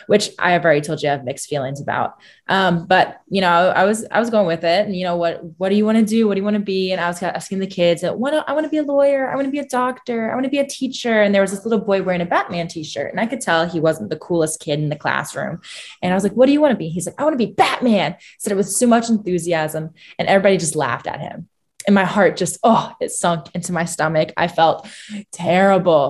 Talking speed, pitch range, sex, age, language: 295 wpm, 160-205 Hz, female, 20-39, English